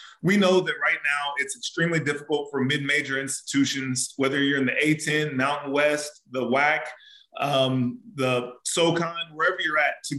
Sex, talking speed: male, 160 wpm